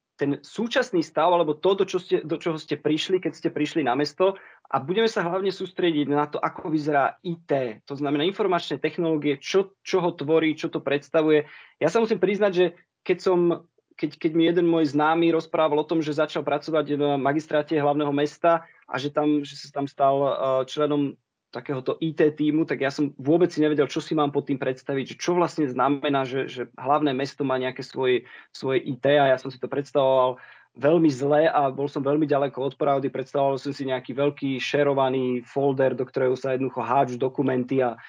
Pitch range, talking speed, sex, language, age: 135-165 Hz, 190 wpm, male, Slovak, 20-39